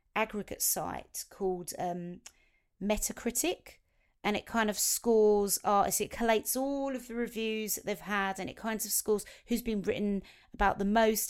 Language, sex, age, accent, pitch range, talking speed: English, female, 30-49, British, 190-220 Hz, 160 wpm